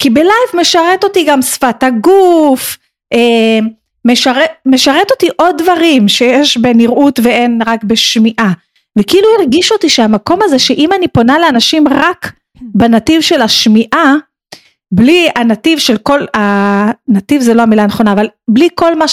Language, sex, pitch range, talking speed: Hebrew, female, 225-320 Hz, 135 wpm